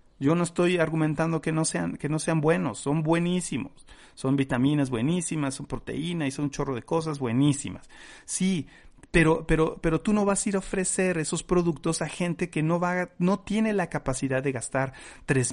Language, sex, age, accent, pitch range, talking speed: Spanish, male, 40-59, Mexican, 130-170 Hz, 195 wpm